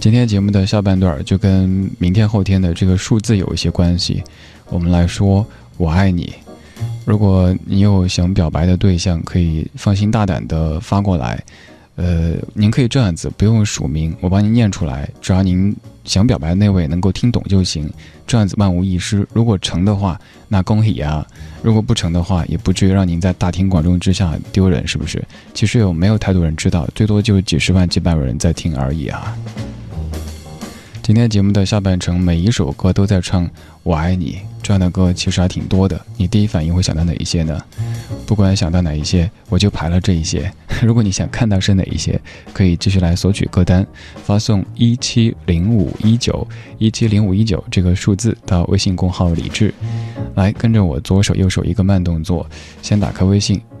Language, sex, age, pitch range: Chinese, male, 20-39, 85-105 Hz